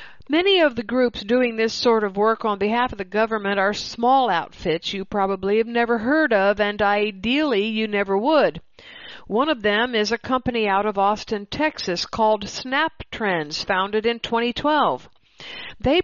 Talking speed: 170 wpm